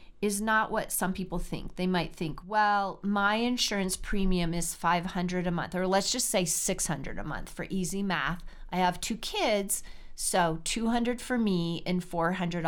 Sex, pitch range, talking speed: female, 170-200 Hz, 195 wpm